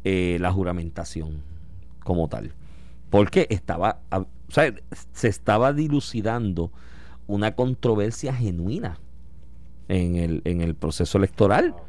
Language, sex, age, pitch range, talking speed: Spanish, male, 40-59, 90-130 Hz, 105 wpm